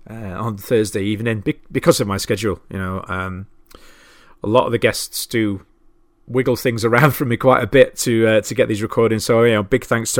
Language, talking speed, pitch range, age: English, 220 wpm, 100-125 Hz, 30-49